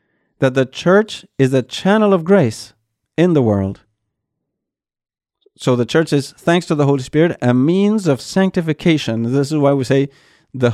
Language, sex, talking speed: English, male, 170 wpm